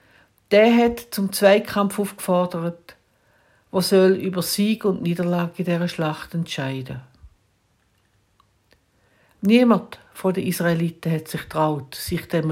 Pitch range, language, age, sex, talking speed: 150-220 Hz, German, 60-79, female, 115 wpm